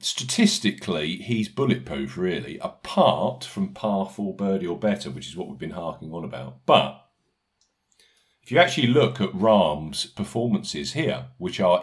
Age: 50-69